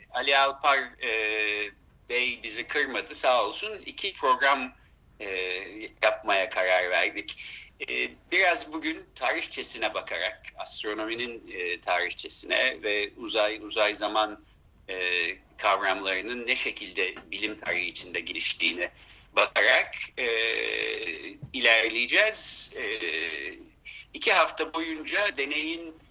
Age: 60-79